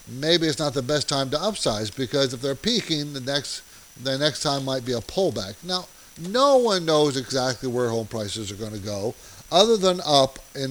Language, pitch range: English, 120-165 Hz